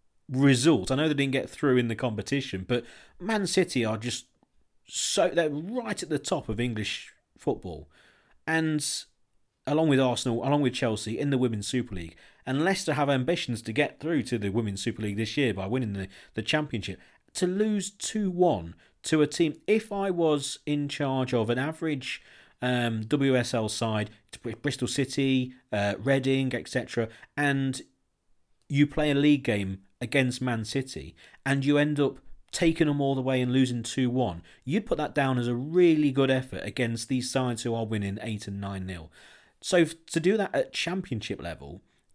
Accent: British